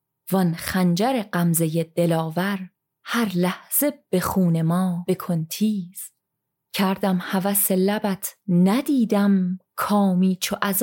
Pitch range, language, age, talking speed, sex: 170-200 Hz, Persian, 30-49, 100 wpm, female